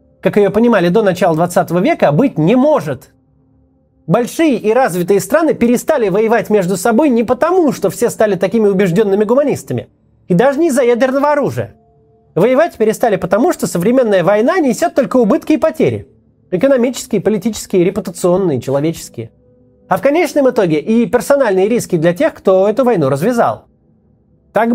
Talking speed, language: 150 wpm, Russian